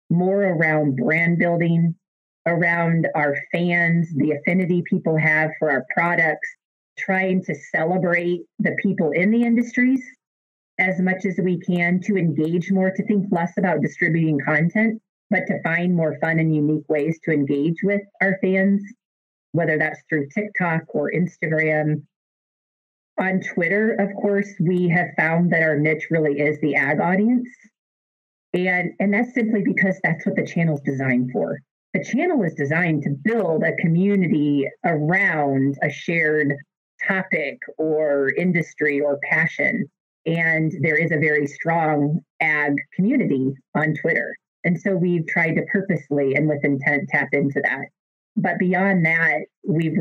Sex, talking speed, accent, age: female, 150 wpm, American, 30-49